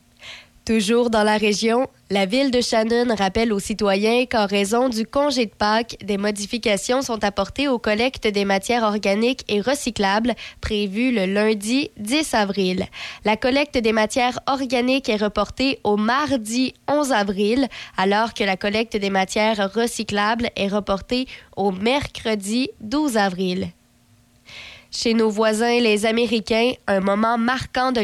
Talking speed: 140 wpm